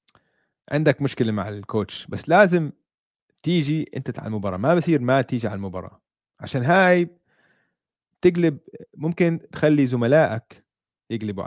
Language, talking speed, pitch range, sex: Arabic, 120 wpm, 100-140 Hz, male